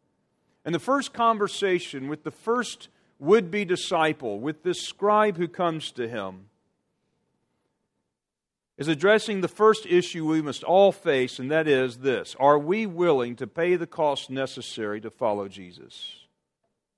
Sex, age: male, 40-59